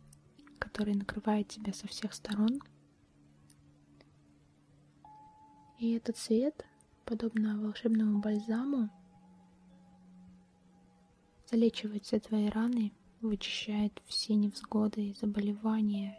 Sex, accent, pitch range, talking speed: female, native, 145-215 Hz, 80 wpm